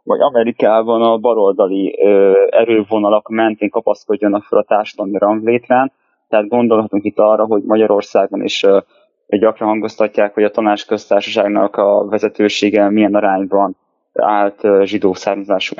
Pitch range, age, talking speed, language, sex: 105-115 Hz, 20-39, 120 wpm, Hungarian, male